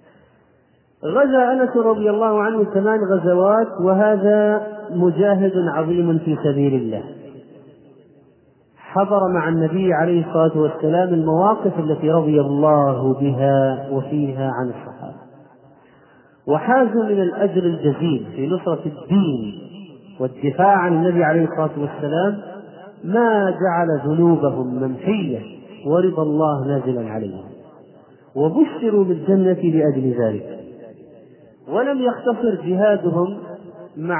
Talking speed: 100 wpm